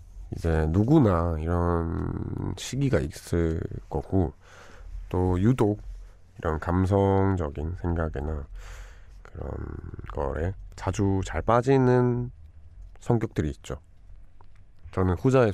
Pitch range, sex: 85-100 Hz, male